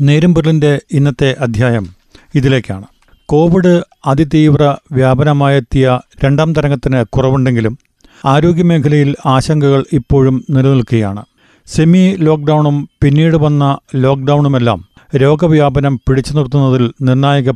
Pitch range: 135-155 Hz